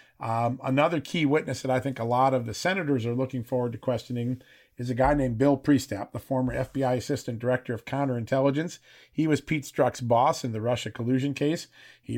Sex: male